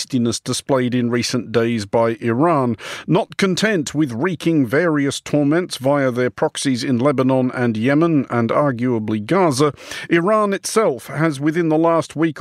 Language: English